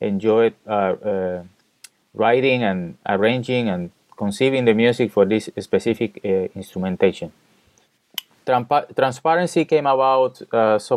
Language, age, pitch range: English, 20-39, 100-125 Hz